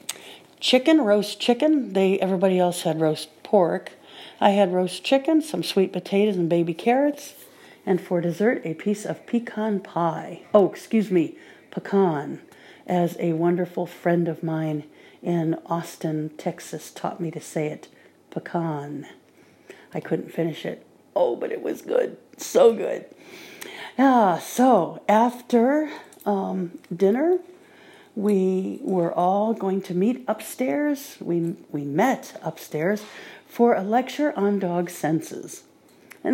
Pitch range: 170-245 Hz